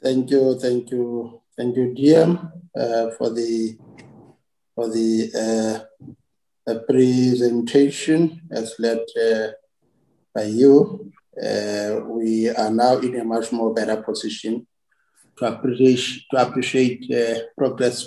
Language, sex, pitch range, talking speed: English, male, 110-130 Hz, 120 wpm